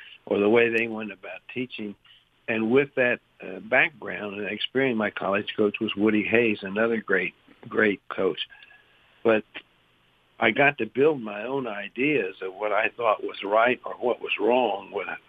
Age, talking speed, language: 60-79, 170 wpm, English